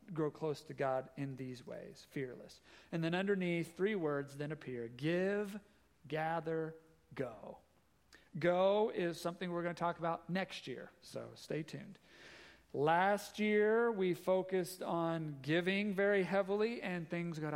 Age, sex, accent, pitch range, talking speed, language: 40-59, male, American, 145-190 Hz, 145 wpm, English